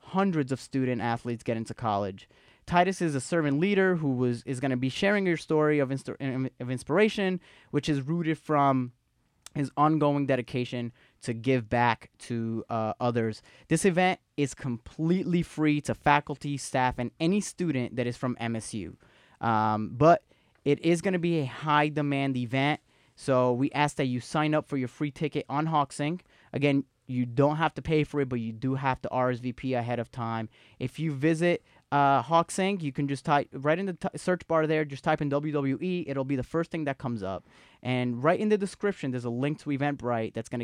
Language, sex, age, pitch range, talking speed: English, male, 20-39, 120-155 Hz, 200 wpm